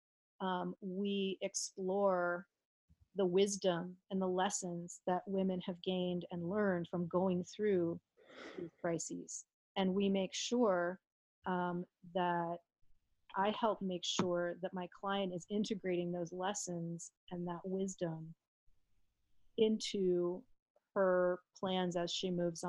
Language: English